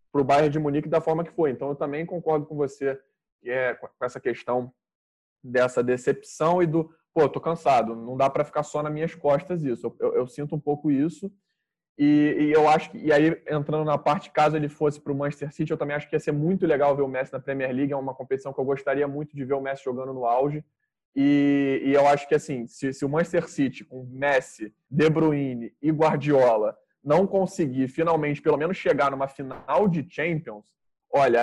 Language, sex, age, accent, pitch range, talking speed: Portuguese, male, 20-39, Brazilian, 130-155 Hz, 225 wpm